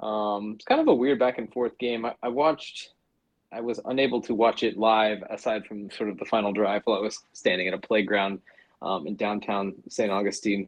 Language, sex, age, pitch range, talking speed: English, male, 20-39, 105-130 Hz, 220 wpm